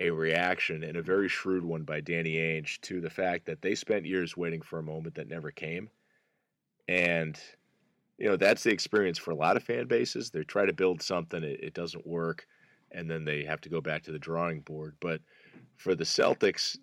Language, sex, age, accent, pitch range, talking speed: English, male, 30-49, American, 80-95 Hz, 210 wpm